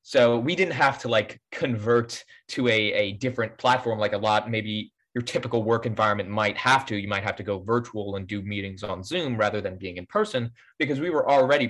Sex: male